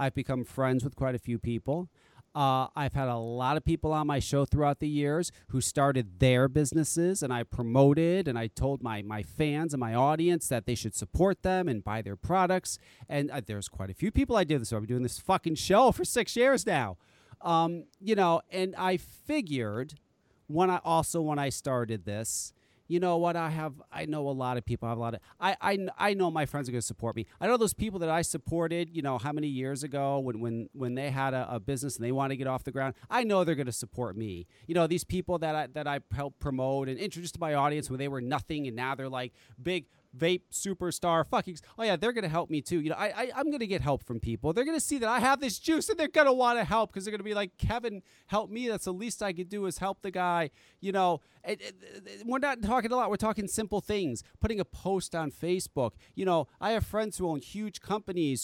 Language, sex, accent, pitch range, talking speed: English, male, American, 130-200 Hz, 250 wpm